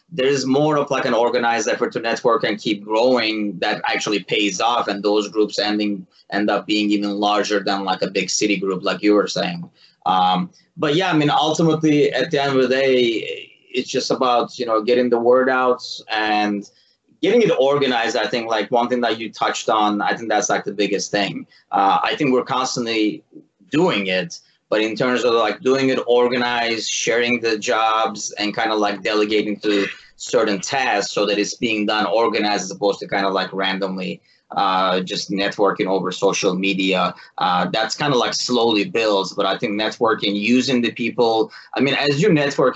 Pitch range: 100-125 Hz